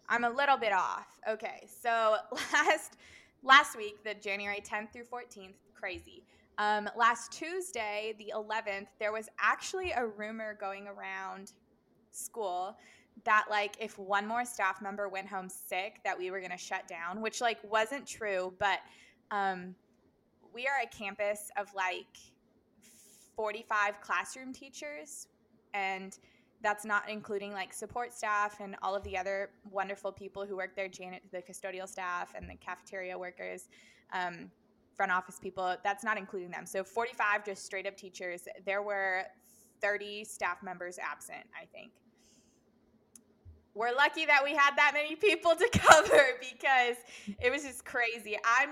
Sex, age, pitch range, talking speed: female, 20-39, 195-230 Hz, 150 wpm